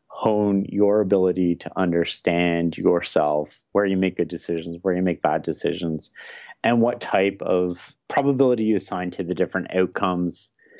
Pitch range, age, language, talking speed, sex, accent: 90-110 Hz, 30-49, English, 150 wpm, male, American